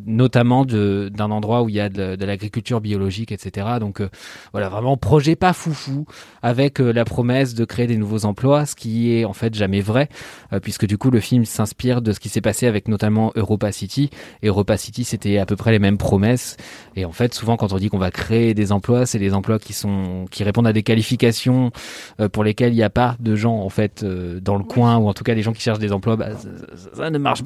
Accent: French